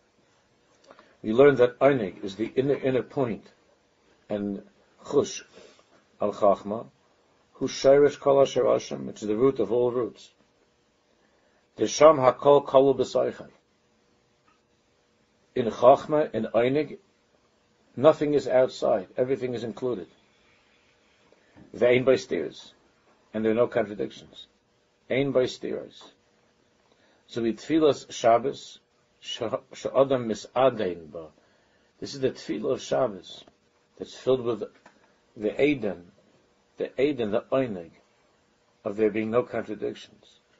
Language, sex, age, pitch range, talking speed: English, male, 60-79, 110-135 Hz, 95 wpm